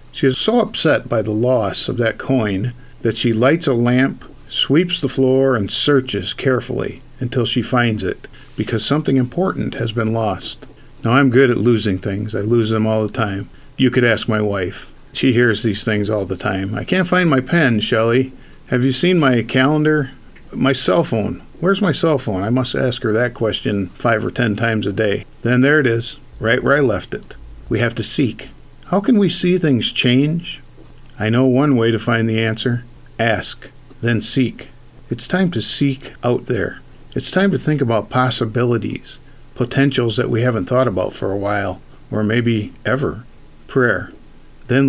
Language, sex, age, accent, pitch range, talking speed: English, male, 50-69, American, 110-135 Hz, 190 wpm